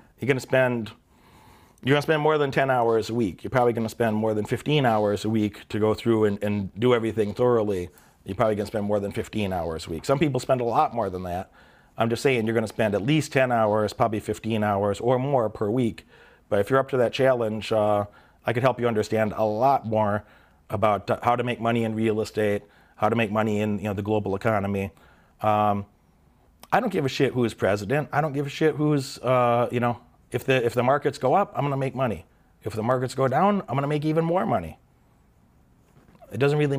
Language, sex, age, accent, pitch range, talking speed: English, male, 30-49, American, 105-130 Hz, 230 wpm